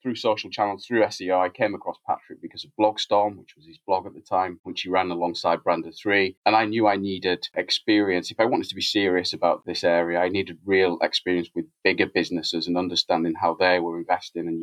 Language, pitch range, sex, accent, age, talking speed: English, 85-100 Hz, male, British, 20-39, 220 wpm